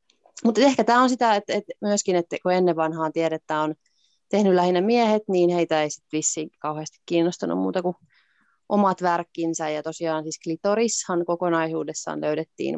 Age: 30-49